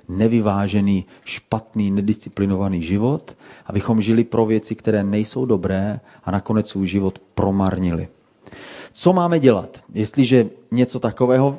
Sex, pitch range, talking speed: male, 100-120 Hz, 115 wpm